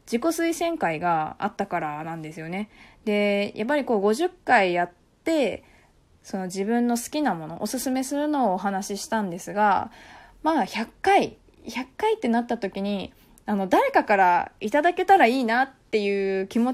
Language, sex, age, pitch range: Japanese, female, 20-39, 190-245 Hz